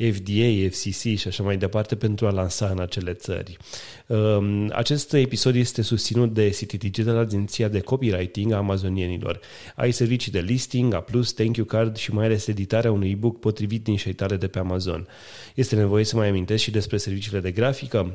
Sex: male